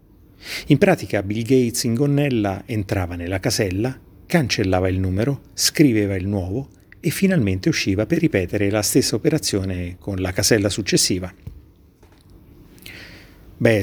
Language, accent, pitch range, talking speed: Italian, native, 95-110 Hz, 120 wpm